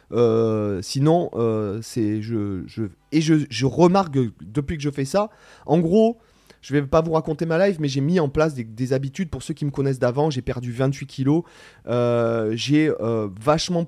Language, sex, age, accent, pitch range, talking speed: French, male, 30-49, French, 120-155 Hz, 205 wpm